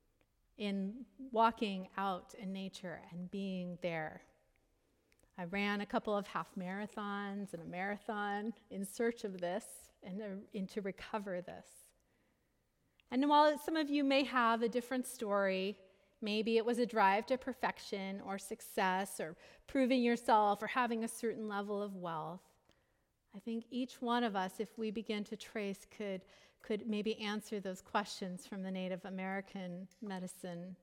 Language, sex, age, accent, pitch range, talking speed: English, female, 40-59, American, 190-225 Hz, 150 wpm